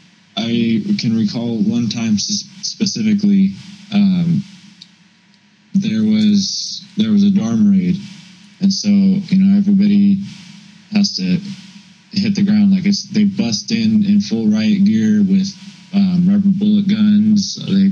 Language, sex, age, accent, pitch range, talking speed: English, male, 20-39, American, 195-205 Hz, 130 wpm